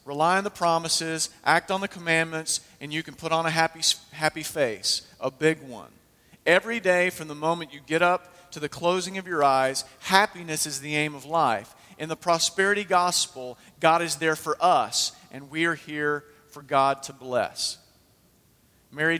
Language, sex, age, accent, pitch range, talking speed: English, male, 40-59, American, 135-165 Hz, 180 wpm